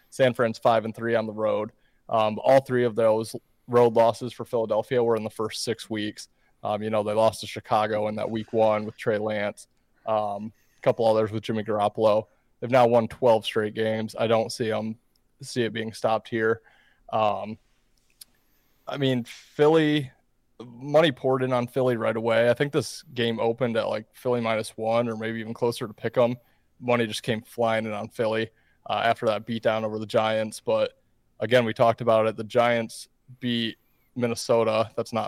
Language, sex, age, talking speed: English, male, 20-39, 190 wpm